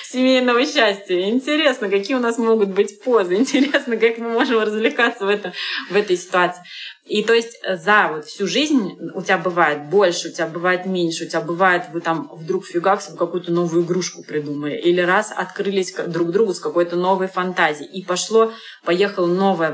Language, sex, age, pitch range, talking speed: Russian, female, 20-39, 160-205 Hz, 180 wpm